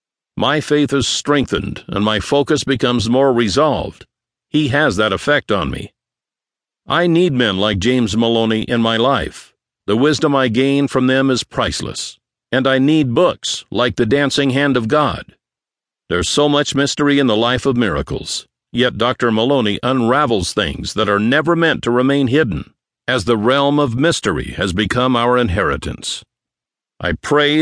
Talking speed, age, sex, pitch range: 165 wpm, 60-79, male, 115-140 Hz